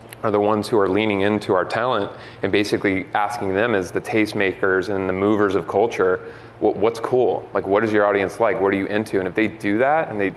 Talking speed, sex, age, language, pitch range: 230 wpm, male, 30-49, English, 95-110 Hz